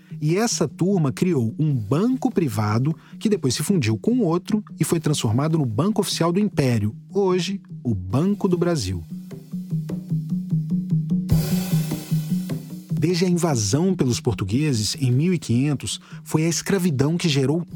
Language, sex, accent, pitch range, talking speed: Portuguese, male, Brazilian, 145-190 Hz, 130 wpm